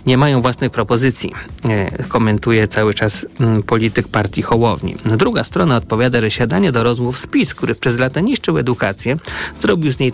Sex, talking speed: male, 155 wpm